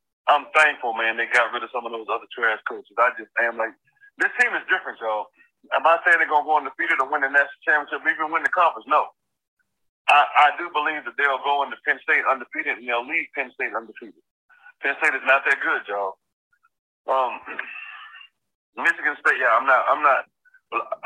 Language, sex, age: English, male, 30-49